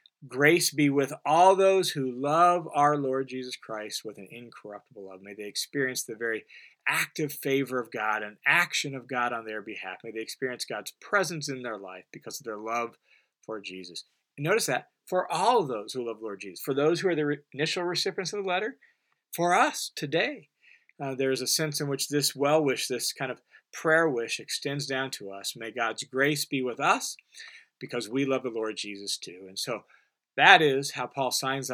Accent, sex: American, male